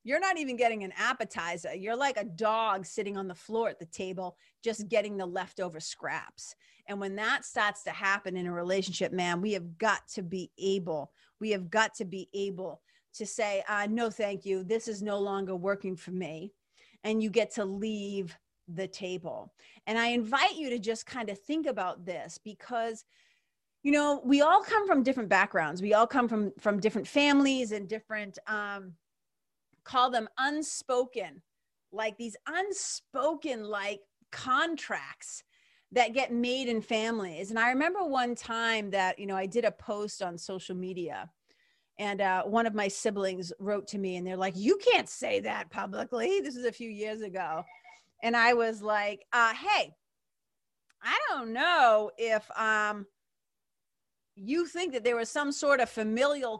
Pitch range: 195-245 Hz